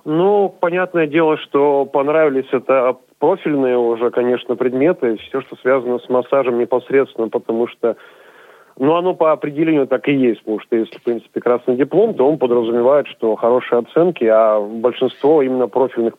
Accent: native